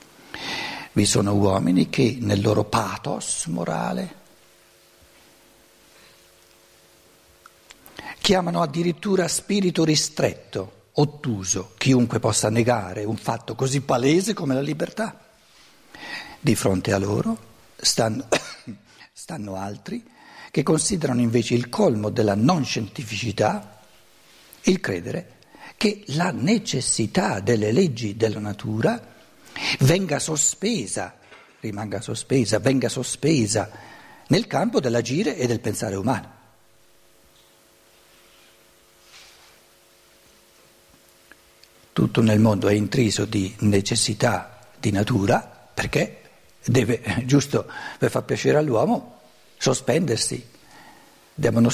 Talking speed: 90 wpm